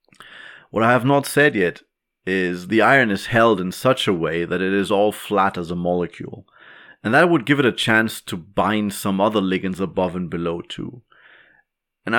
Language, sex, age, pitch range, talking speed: English, male, 30-49, 100-145 Hz, 195 wpm